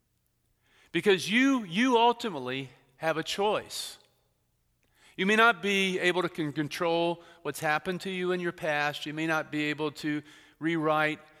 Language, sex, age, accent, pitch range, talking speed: English, male, 40-59, American, 135-180 Hz, 145 wpm